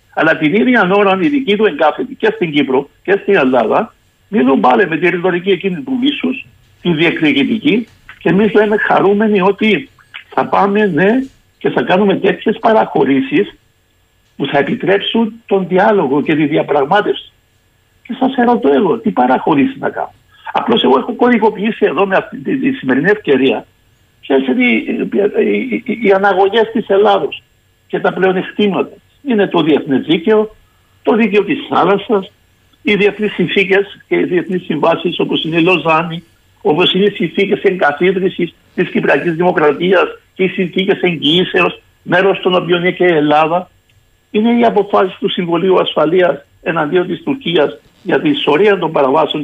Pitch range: 160-215 Hz